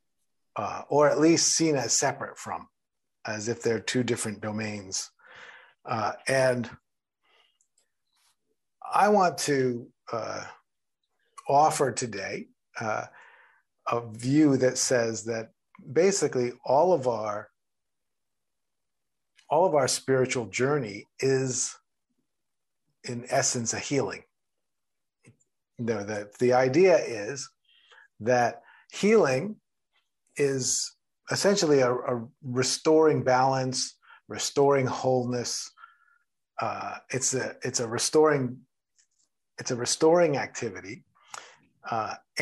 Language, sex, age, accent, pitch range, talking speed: English, male, 50-69, American, 120-145 Hz, 100 wpm